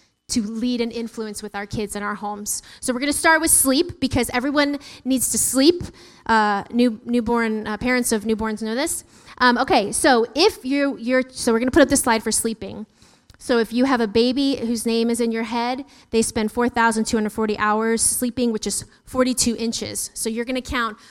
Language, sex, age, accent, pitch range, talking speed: English, female, 20-39, American, 215-250 Hz, 220 wpm